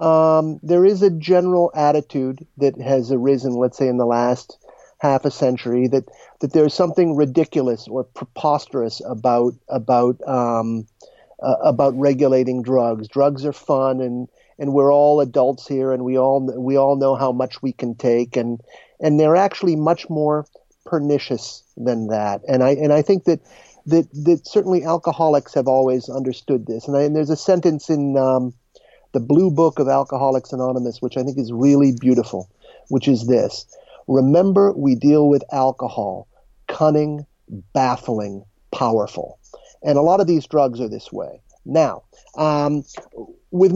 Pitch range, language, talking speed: 125-155 Hz, English, 160 wpm